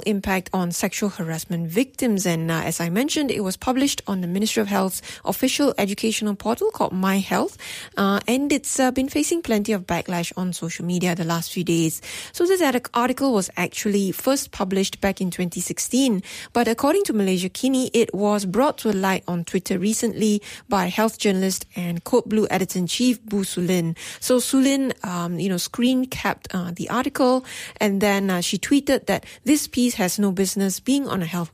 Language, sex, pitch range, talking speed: English, female, 180-240 Hz, 185 wpm